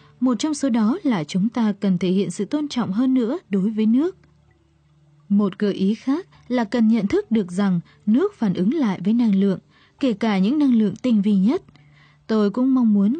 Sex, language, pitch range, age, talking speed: female, Vietnamese, 195-255 Hz, 20-39, 215 wpm